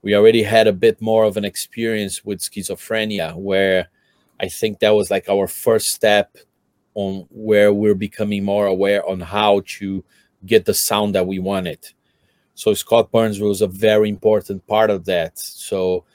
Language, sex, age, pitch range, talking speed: English, male, 30-49, 100-110 Hz, 170 wpm